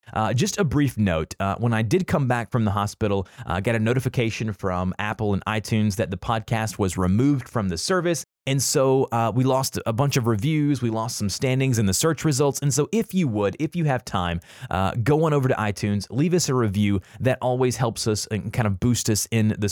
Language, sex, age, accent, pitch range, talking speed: English, male, 30-49, American, 105-130 Hz, 235 wpm